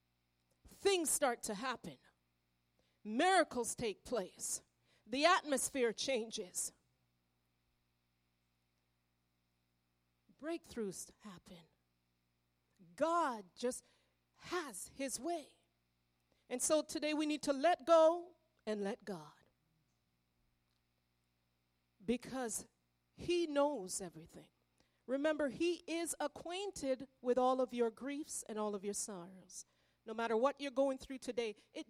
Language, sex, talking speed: English, female, 100 wpm